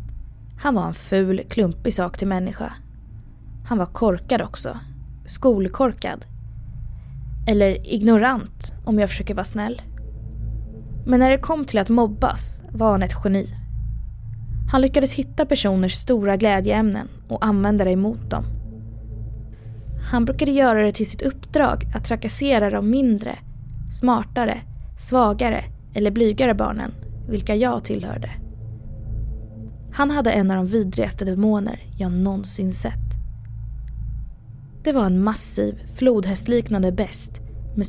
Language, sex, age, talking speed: Swedish, female, 20-39, 125 wpm